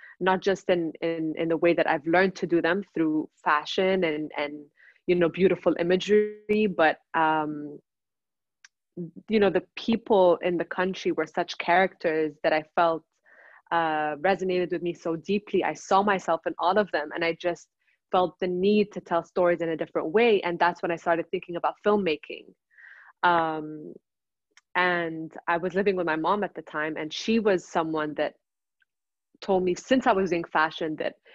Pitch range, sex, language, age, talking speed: 165-195 Hz, female, English, 20-39, 180 wpm